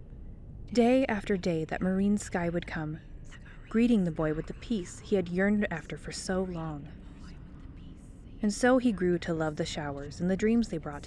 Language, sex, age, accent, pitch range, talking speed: English, female, 20-39, American, 160-205 Hz, 185 wpm